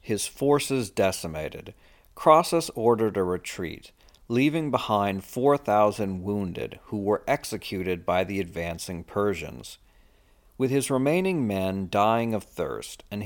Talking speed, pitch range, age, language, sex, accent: 120 wpm, 90-125 Hz, 50-69, English, male, American